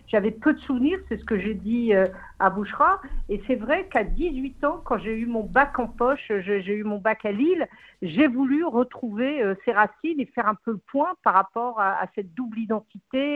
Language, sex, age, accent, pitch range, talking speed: French, female, 60-79, French, 205-265 Hz, 210 wpm